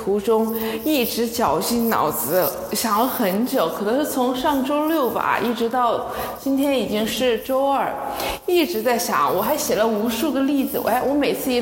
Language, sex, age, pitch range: Chinese, female, 20-39, 225-300 Hz